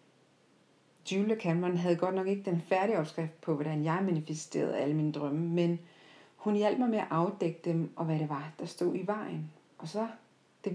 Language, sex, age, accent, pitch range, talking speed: Danish, female, 40-59, native, 155-180 Hz, 195 wpm